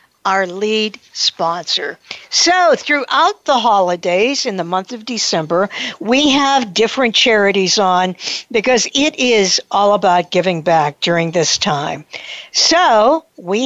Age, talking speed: 60-79, 125 wpm